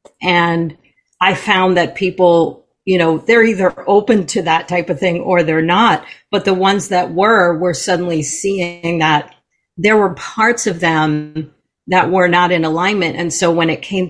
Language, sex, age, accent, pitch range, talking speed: English, female, 40-59, American, 175-225 Hz, 180 wpm